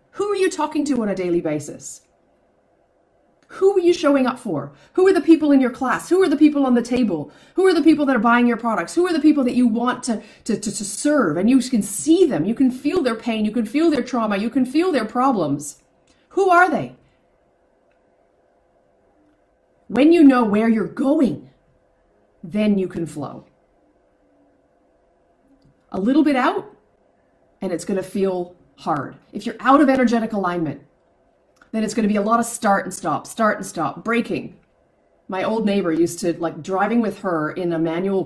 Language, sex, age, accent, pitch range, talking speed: English, female, 40-59, American, 170-260 Hz, 195 wpm